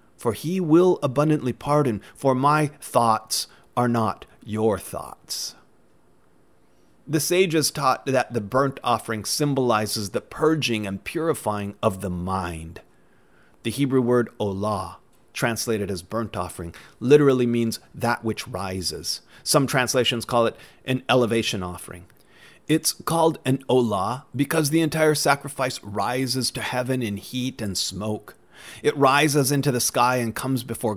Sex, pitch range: male, 105-135 Hz